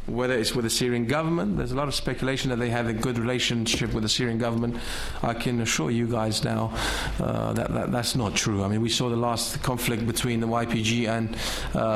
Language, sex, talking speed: English, male, 225 wpm